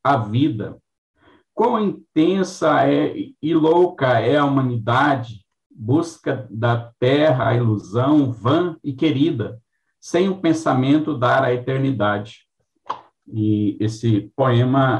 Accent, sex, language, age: Brazilian, male, Portuguese, 50-69